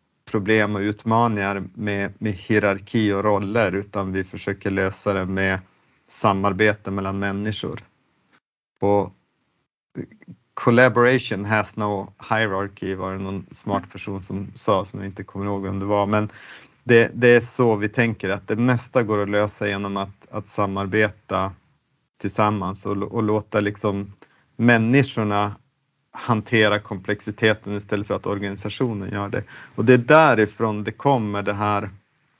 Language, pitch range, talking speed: Swedish, 100-115 Hz, 140 wpm